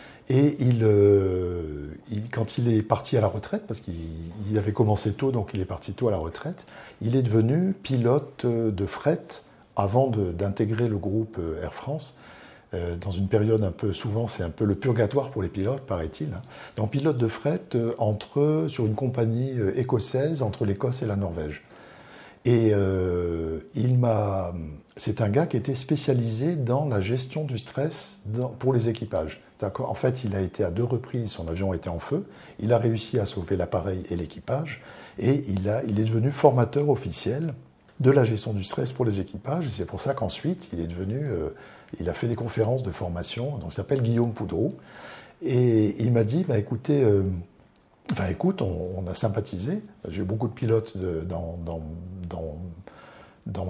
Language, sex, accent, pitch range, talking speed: French, male, French, 95-125 Hz, 190 wpm